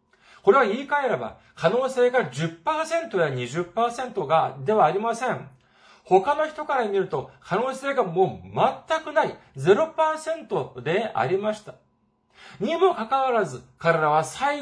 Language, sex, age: Japanese, male, 40-59